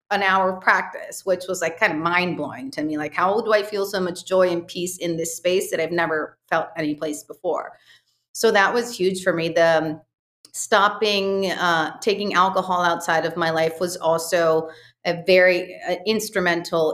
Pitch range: 165-195 Hz